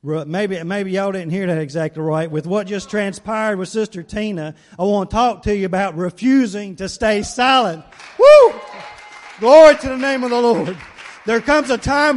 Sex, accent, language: male, American, English